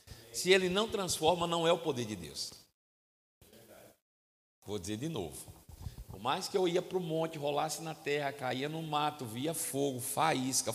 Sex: male